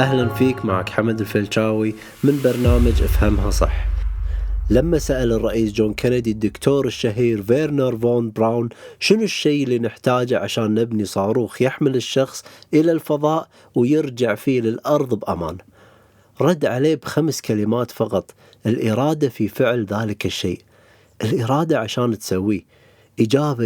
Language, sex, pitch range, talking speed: Arabic, male, 110-140 Hz, 120 wpm